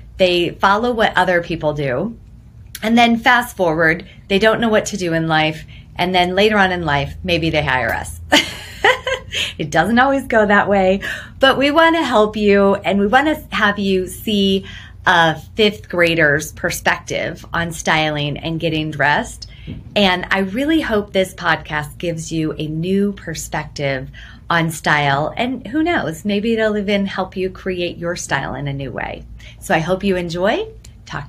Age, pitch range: 30-49, 150-205 Hz